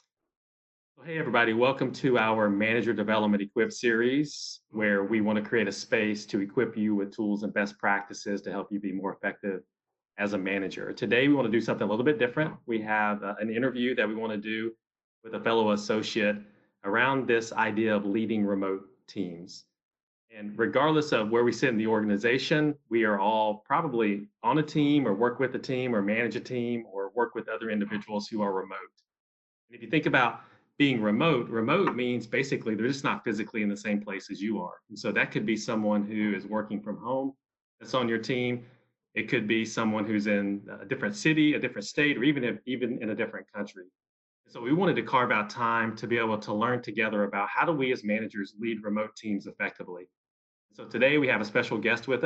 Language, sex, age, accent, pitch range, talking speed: English, male, 30-49, American, 105-125 Hz, 210 wpm